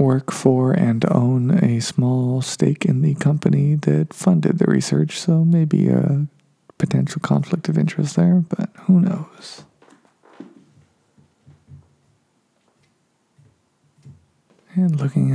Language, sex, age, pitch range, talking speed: English, male, 40-59, 145-185 Hz, 105 wpm